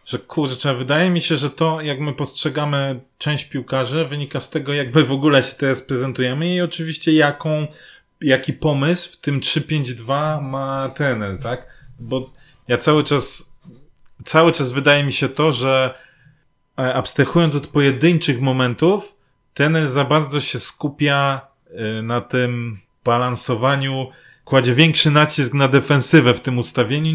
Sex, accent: male, native